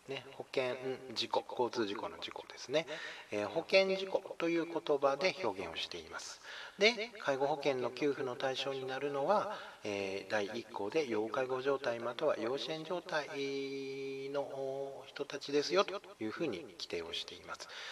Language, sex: Japanese, male